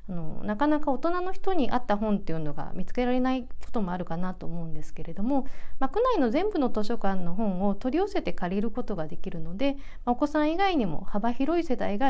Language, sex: Japanese, female